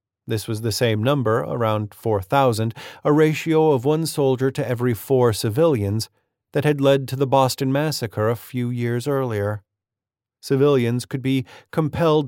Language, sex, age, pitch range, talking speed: English, male, 40-59, 115-145 Hz, 155 wpm